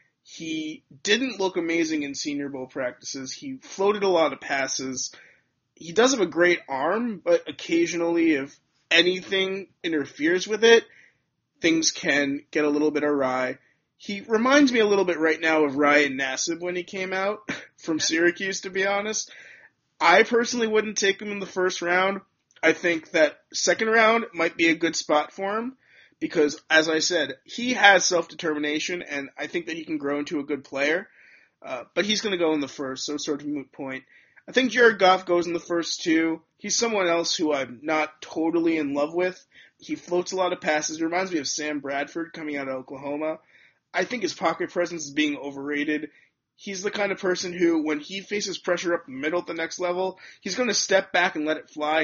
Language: English